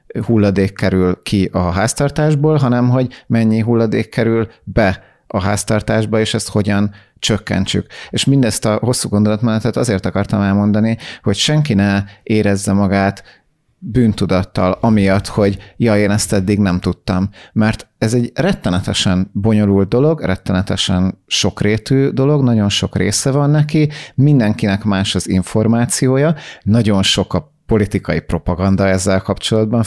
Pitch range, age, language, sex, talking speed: 100-115 Hz, 30-49, Hungarian, male, 130 wpm